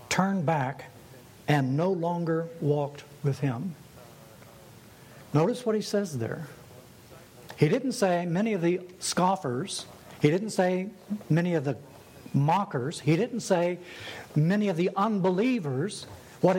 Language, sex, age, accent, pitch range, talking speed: English, male, 60-79, American, 140-180 Hz, 125 wpm